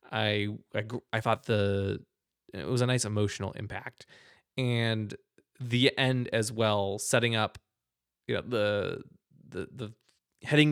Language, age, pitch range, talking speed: English, 20-39, 105-135 Hz, 135 wpm